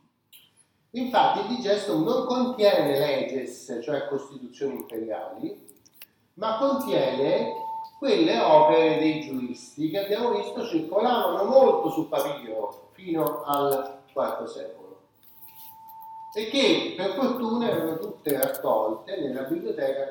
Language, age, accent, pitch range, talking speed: Italian, 30-49, native, 135-220 Hz, 105 wpm